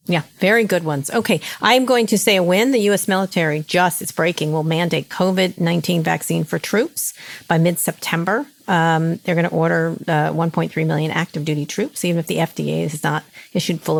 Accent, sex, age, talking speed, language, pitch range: American, female, 40-59, 190 wpm, English, 150-190 Hz